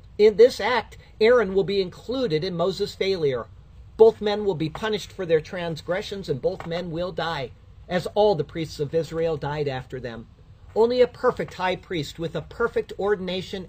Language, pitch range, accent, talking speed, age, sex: English, 135-185 Hz, American, 180 wpm, 50-69, male